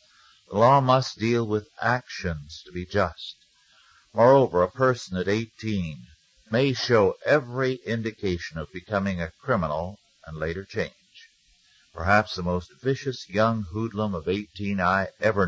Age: 60-79